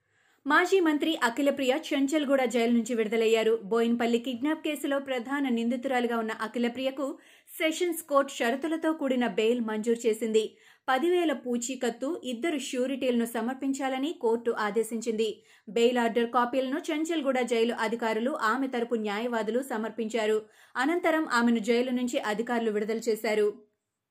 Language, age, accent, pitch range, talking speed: Telugu, 30-49, native, 230-280 Hz, 110 wpm